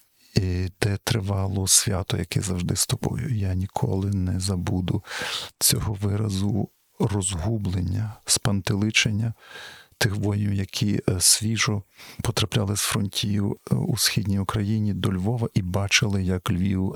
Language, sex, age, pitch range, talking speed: Ukrainian, male, 50-69, 95-115 Hz, 115 wpm